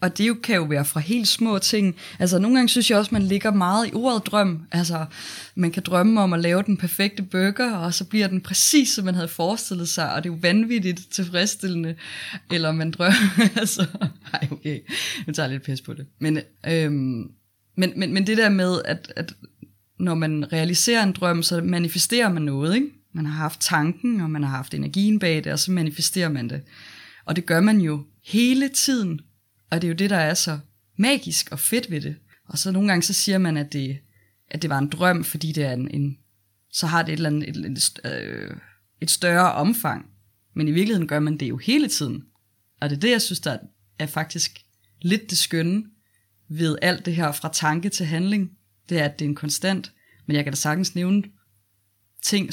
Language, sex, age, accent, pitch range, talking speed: Danish, female, 20-39, native, 150-190 Hz, 215 wpm